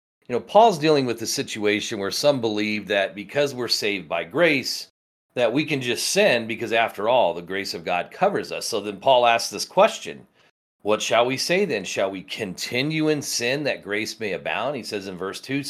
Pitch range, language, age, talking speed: 95-130 Hz, English, 40-59, 210 wpm